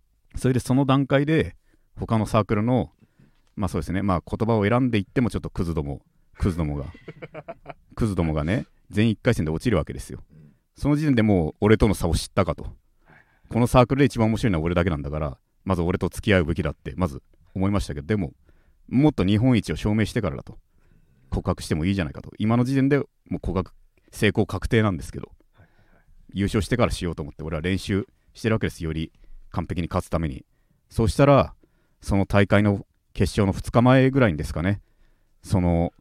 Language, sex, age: Japanese, male, 40-59